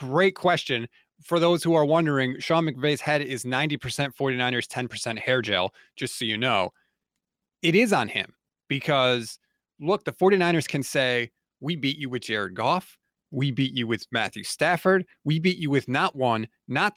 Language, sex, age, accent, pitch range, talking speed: English, male, 30-49, American, 135-200 Hz, 175 wpm